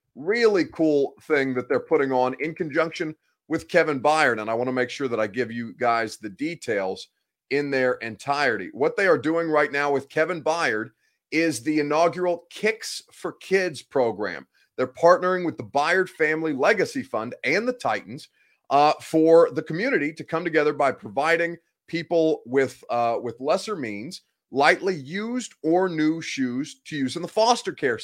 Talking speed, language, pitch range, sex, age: 175 wpm, English, 135-170 Hz, male, 30-49